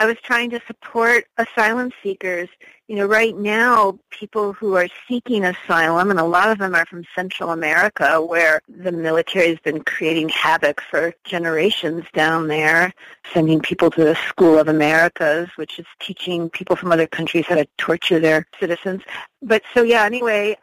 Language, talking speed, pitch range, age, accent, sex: English, 170 wpm, 175-205 Hz, 50-69, American, female